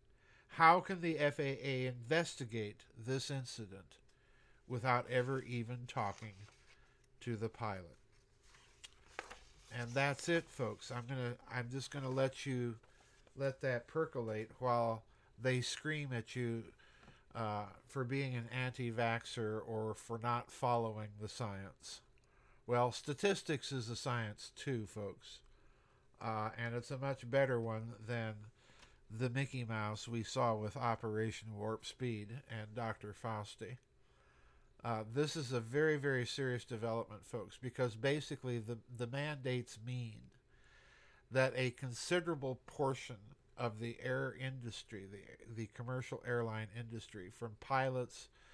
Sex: male